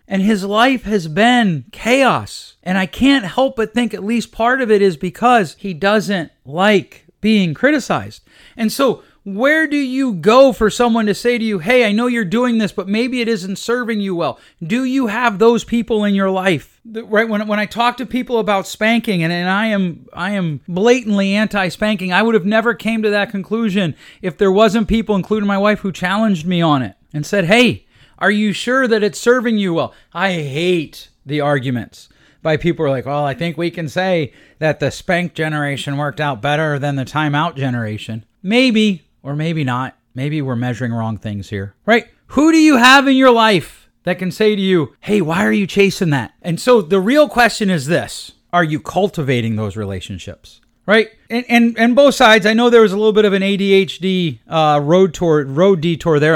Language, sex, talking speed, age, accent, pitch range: English, male, 210 wpm, 40-59, American, 155-225 Hz